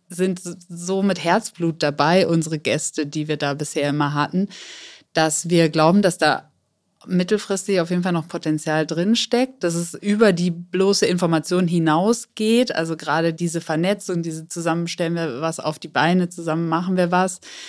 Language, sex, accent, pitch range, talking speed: German, female, German, 155-185 Hz, 160 wpm